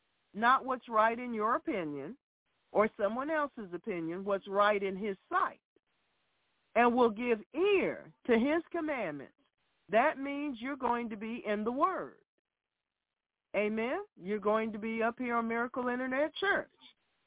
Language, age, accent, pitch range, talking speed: English, 50-69, American, 215-305 Hz, 145 wpm